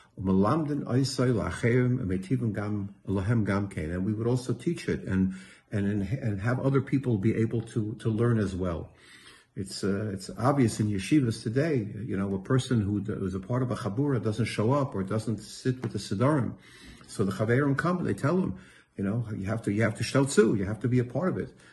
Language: English